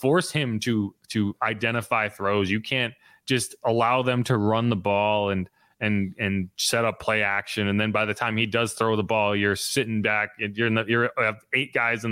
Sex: male